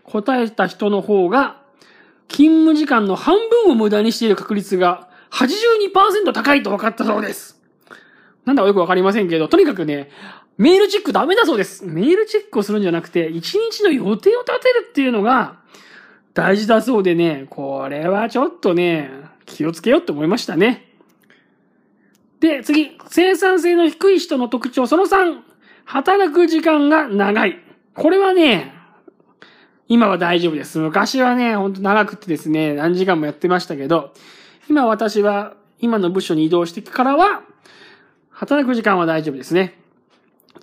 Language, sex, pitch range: Japanese, male, 185-305 Hz